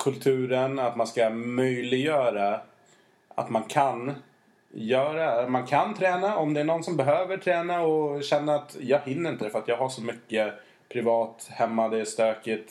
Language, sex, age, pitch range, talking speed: Swedish, male, 20-39, 110-145 Hz, 170 wpm